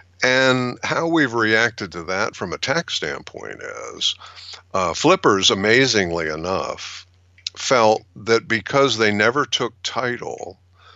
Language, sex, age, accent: English, male, 50-69, American